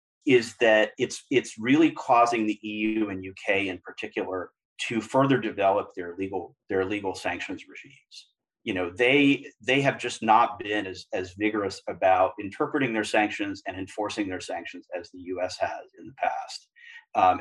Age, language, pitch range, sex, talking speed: 30-49, English, 95-120 Hz, male, 165 wpm